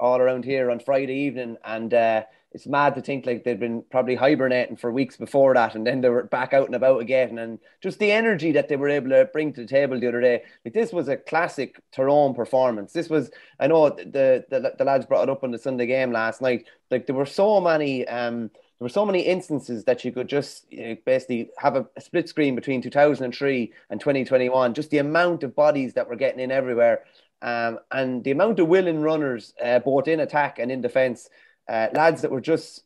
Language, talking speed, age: English, 245 wpm, 20-39